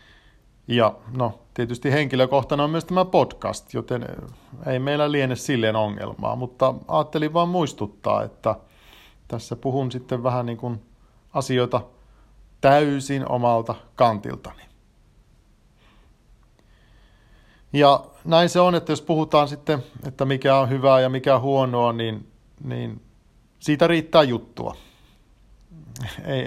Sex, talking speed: male, 110 wpm